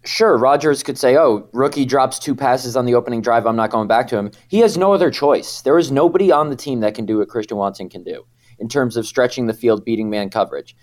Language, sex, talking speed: English, male, 260 wpm